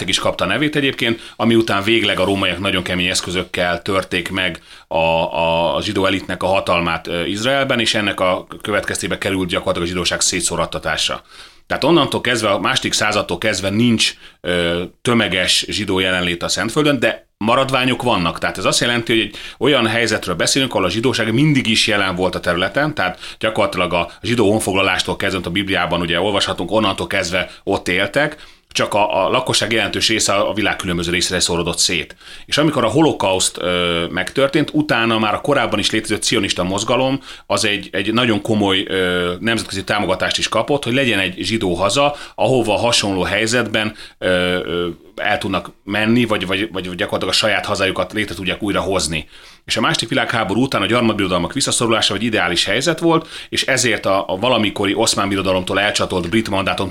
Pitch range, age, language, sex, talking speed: 90-115 Hz, 30-49, Hungarian, male, 165 wpm